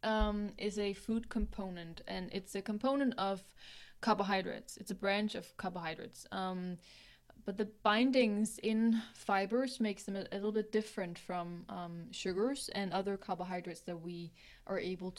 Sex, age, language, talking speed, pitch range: female, 20-39, English, 155 wpm, 175-215 Hz